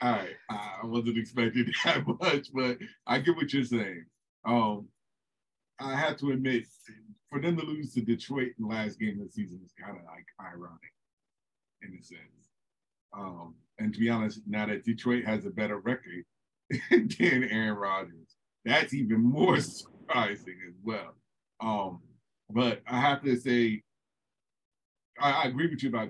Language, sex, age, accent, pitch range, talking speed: English, male, 40-59, American, 105-130 Hz, 165 wpm